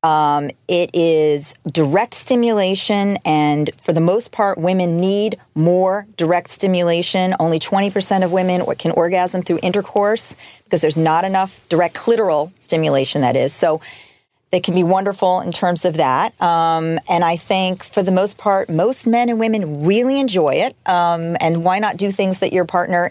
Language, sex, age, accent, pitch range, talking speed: English, female, 40-59, American, 165-200 Hz, 170 wpm